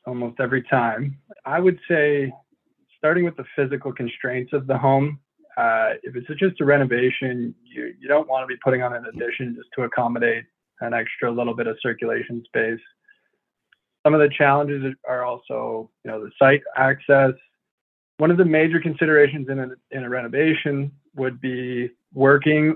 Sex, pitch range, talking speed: male, 125-150 Hz, 165 wpm